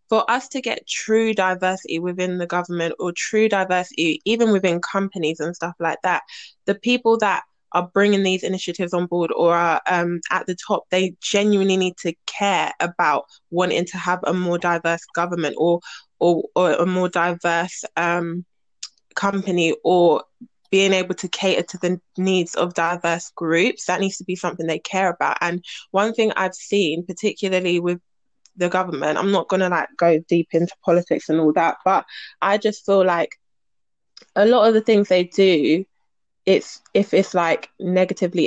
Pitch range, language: 175-195 Hz, English